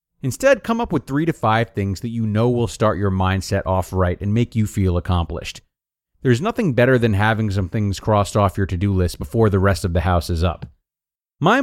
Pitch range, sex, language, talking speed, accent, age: 100-160 Hz, male, English, 225 wpm, American, 40-59